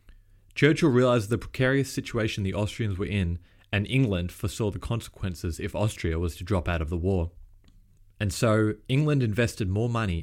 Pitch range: 90-110 Hz